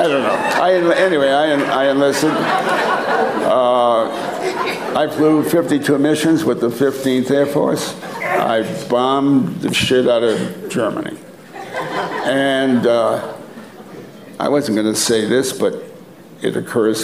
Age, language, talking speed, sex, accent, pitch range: 60-79, English, 120 wpm, male, American, 110-135 Hz